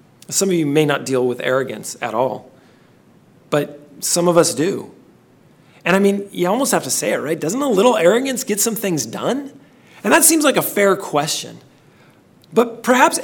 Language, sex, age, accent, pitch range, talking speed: English, male, 40-59, American, 135-190 Hz, 190 wpm